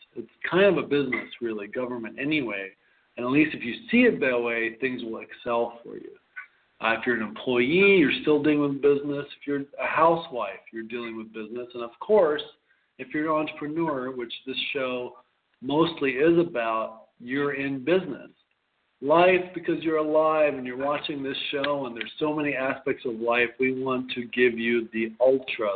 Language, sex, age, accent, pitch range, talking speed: English, male, 50-69, American, 120-165 Hz, 185 wpm